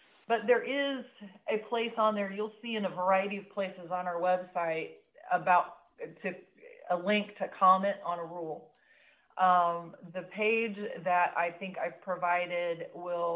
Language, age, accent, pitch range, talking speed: English, 40-59, American, 175-200 Hz, 155 wpm